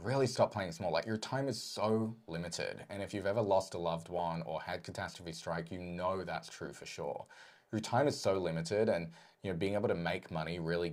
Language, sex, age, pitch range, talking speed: English, male, 20-39, 85-125 Hz, 230 wpm